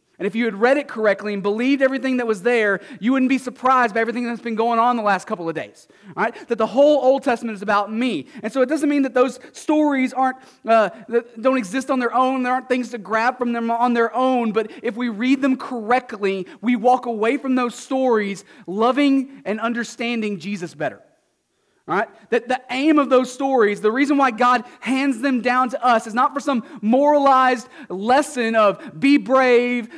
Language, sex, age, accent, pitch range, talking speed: English, male, 30-49, American, 220-260 Hz, 210 wpm